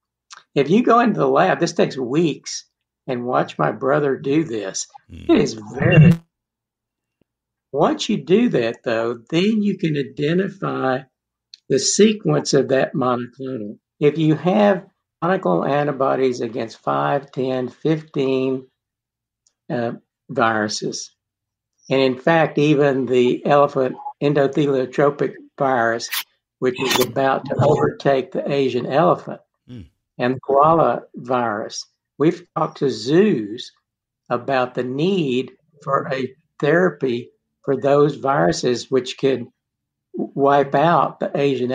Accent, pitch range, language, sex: American, 130-155 Hz, English, male